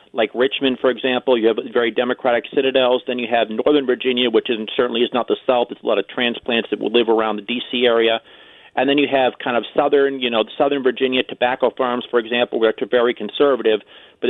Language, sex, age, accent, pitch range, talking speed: English, male, 40-59, American, 115-135 Hz, 225 wpm